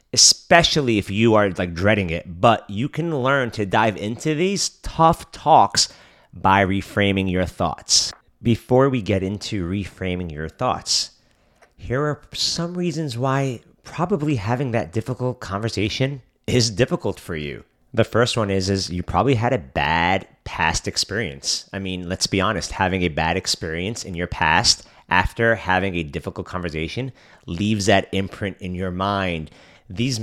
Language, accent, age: English, American, 30-49